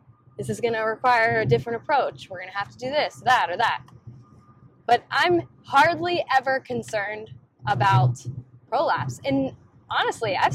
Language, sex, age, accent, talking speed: English, female, 10-29, American, 160 wpm